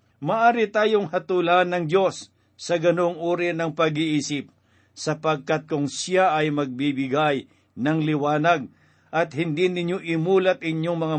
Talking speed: 125 wpm